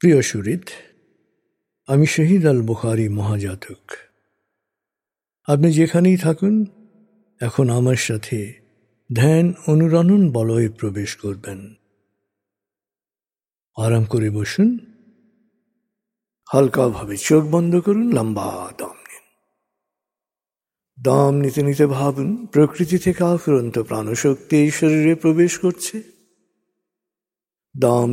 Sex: male